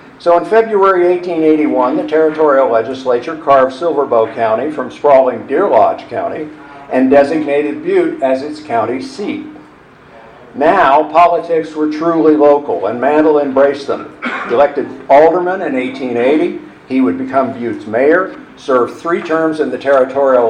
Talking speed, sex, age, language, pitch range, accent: 135 wpm, male, 50-69, English, 135-170 Hz, American